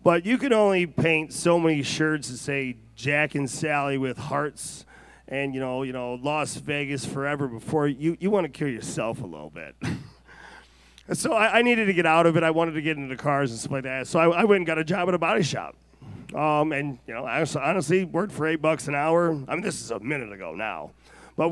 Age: 40-59